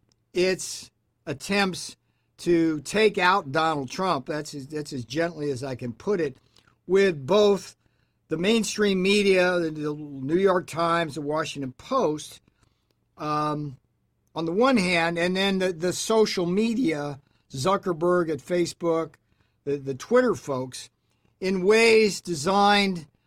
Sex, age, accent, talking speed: male, 50-69, American, 125 wpm